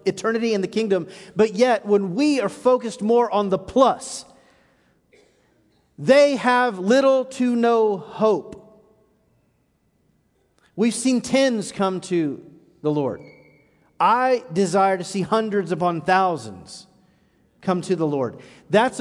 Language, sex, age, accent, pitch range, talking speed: English, male, 40-59, American, 165-245 Hz, 125 wpm